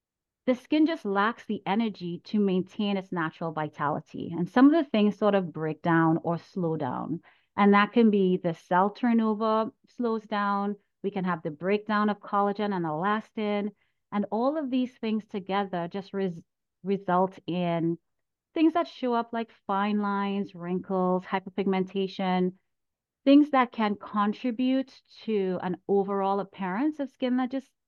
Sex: female